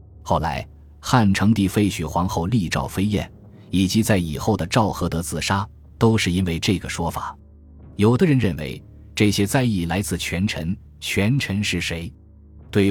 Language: Chinese